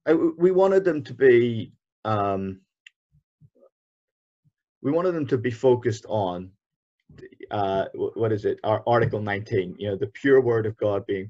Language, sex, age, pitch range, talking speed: English, male, 30-49, 105-130 Hz, 155 wpm